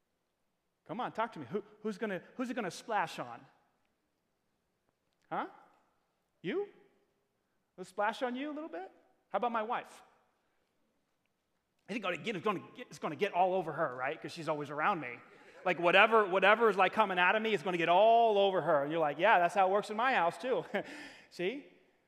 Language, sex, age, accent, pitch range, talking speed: English, male, 30-49, American, 205-300 Hz, 195 wpm